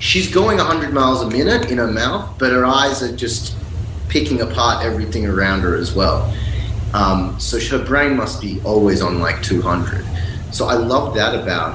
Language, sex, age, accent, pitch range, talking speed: English, male, 30-49, Australian, 95-115 Hz, 185 wpm